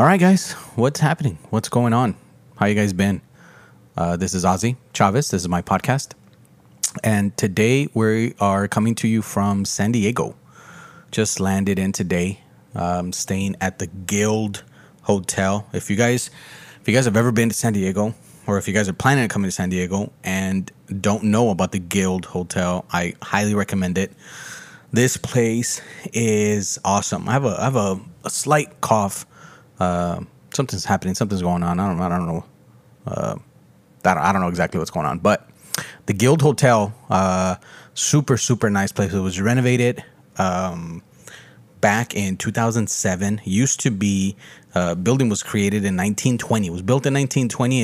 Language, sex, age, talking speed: English, male, 30-49, 175 wpm